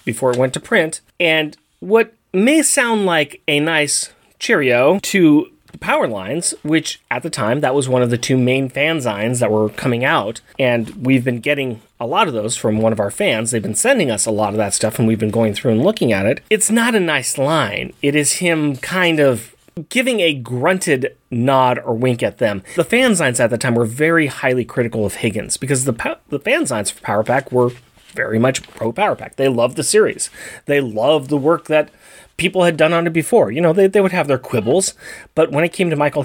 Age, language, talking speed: 30-49, English, 225 wpm